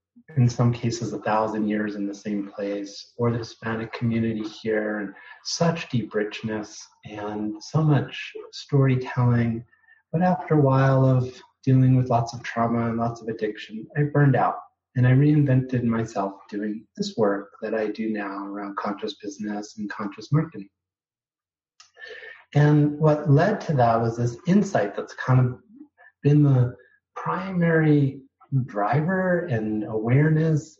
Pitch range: 115-150 Hz